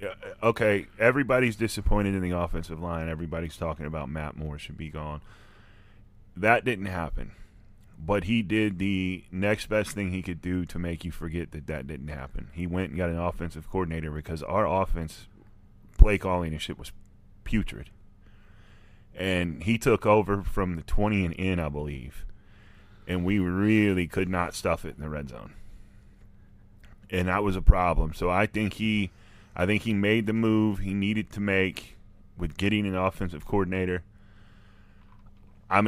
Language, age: English, 30-49